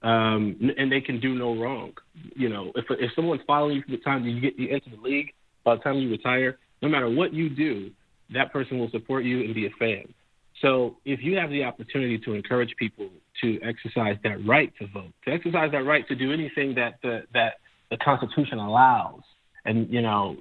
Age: 30-49